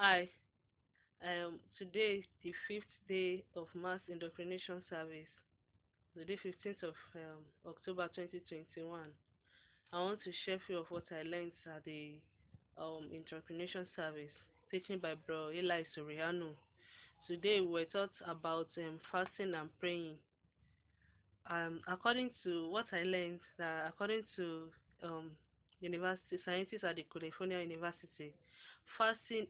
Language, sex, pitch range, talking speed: English, female, 160-185 Hz, 130 wpm